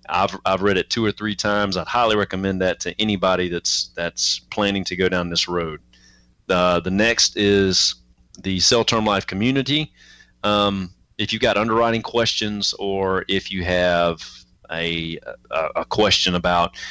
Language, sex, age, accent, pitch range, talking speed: English, male, 30-49, American, 90-105 Hz, 165 wpm